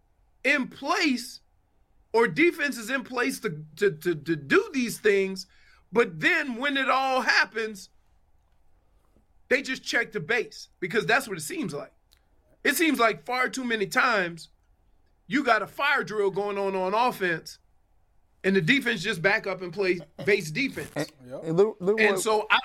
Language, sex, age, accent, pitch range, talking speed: English, male, 40-59, American, 185-255 Hz, 160 wpm